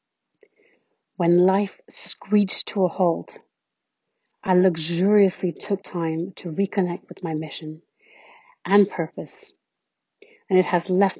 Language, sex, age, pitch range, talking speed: English, female, 40-59, 170-195 Hz, 115 wpm